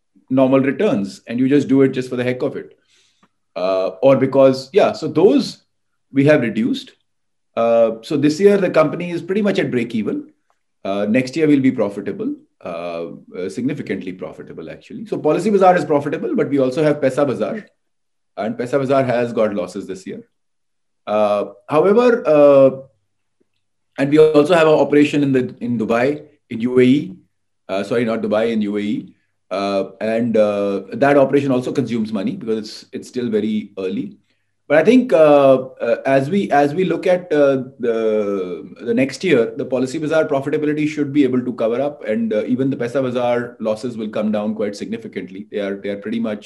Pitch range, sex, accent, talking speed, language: 110-155 Hz, male, Indian, 180 wpm, English